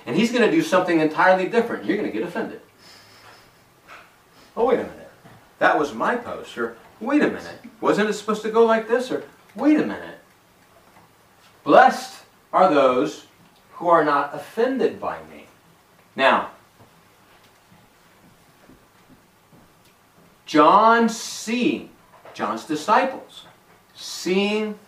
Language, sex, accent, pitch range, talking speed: English, male, American, 150-230 Hz, 120 wpm